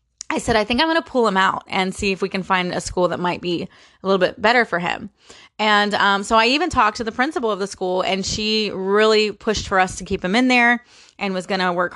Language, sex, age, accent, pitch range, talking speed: English, female, 30-49, American, 185-230 Hz, 275 wpm